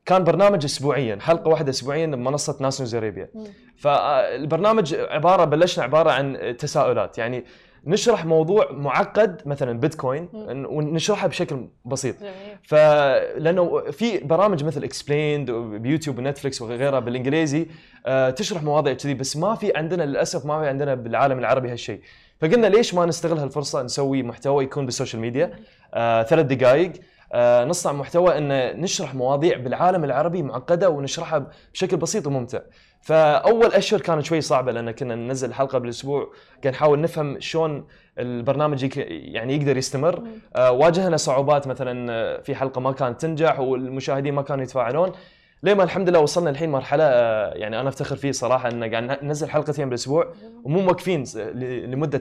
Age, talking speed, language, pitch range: 20-39, 140 wpm, Arabic, 130-170 Hz